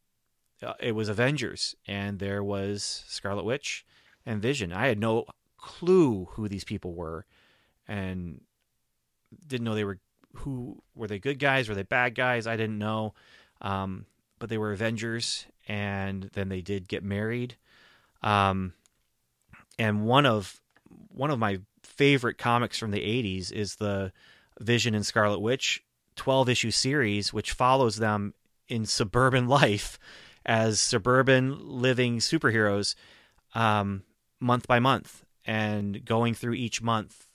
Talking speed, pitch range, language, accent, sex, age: 140 wpm, 100-115 Hz, English, American, male, 30-49